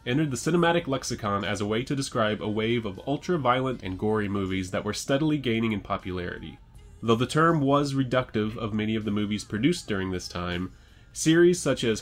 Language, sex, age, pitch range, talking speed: English, male, 20-39, 100-130 Hz, 195 wpm